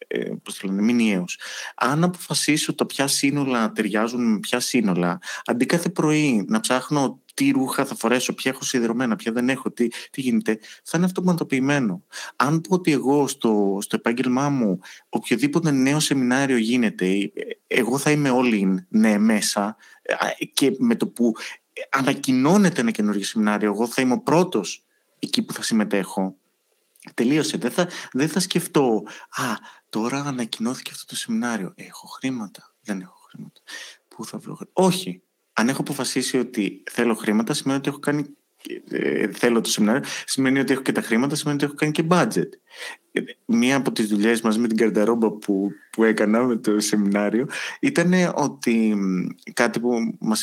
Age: 30-49